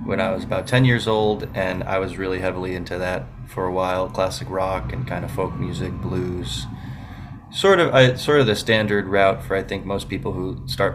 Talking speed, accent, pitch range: 220 wpm, American, 90-115 Hz